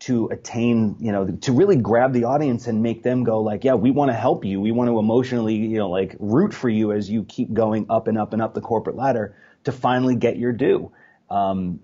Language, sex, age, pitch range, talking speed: English, male, 30-49, 95-120 Hz, 245 wpm